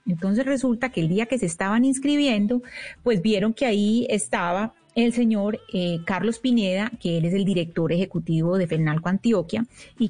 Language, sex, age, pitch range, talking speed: Spanish, female, 30-49, 170-240 Hz, 170 wpm